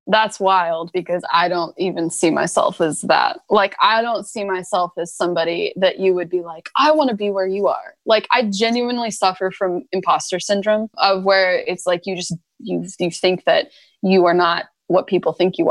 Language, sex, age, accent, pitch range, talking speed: English, female, 20-39, American, 175-210 Hz, 205 wpm